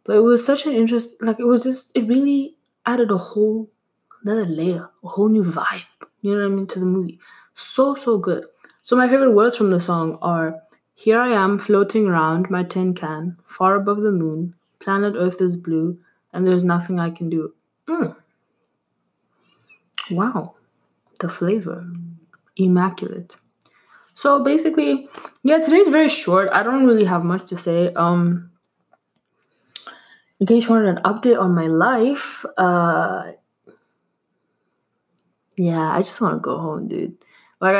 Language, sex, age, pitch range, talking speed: English, female, 20-39, 175-230 Hz, 160 wpm